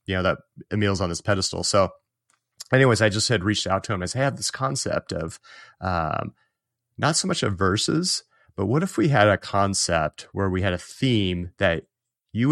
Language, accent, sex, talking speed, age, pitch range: English, American, male, 205 wpm, 30-49, 95-115 Hz